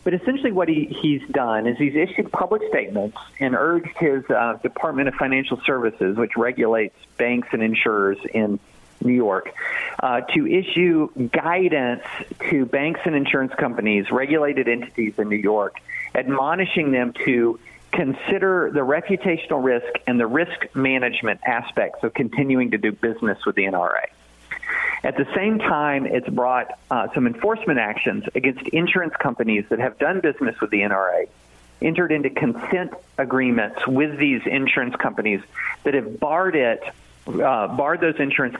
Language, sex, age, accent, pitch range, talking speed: English, male, 50-69, American, 110-160 Hz, 150 wpm